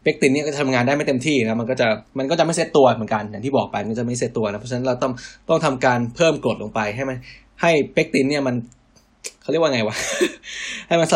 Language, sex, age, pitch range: Thai, male, 20-39, 110-135 Hz